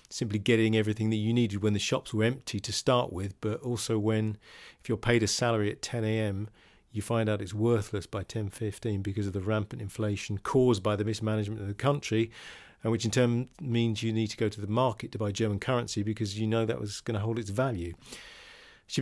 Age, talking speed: 40-59, 220 wpm